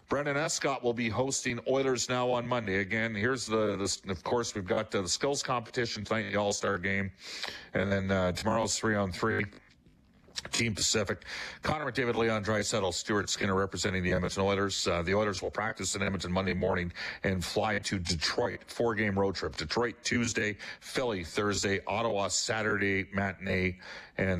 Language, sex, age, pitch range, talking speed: English, male, 40-59, 95-120 Hz, 165 wpm